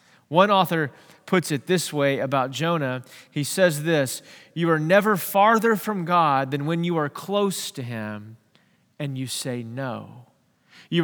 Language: English